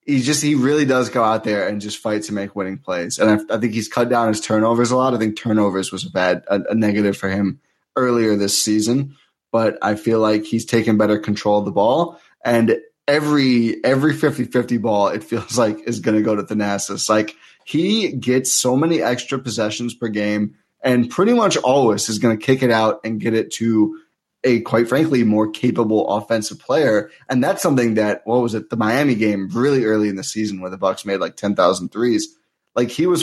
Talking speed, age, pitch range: 215 wpm, 20-39, 105-125 Hz